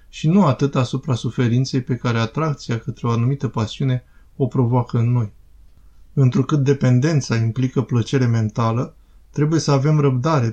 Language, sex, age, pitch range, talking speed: Romanian, male, 20-39, 115-140 Hz, 140 wpm